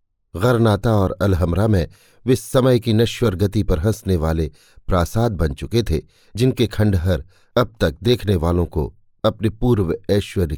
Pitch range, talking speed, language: 85-120 Hz, 145 wpm, Hindi